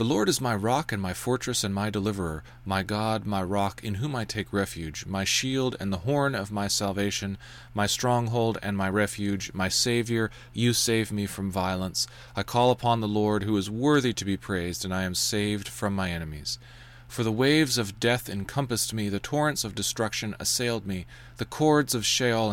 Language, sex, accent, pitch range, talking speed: English, male, American, 100-120 Hz, 200 wpm